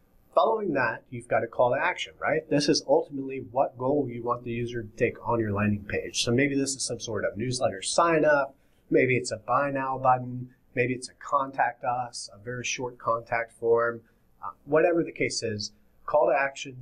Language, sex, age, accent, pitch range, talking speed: English, male, 30-49, American, 115-140 Hz, 205 wpm